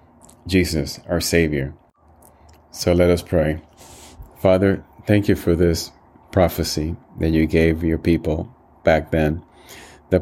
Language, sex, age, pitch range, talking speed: English, male, 30-49, 80-90 Hz, 125 wpm